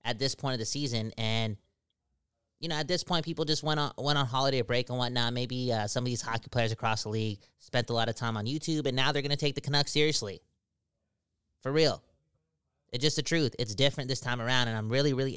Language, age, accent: English, 20-39, American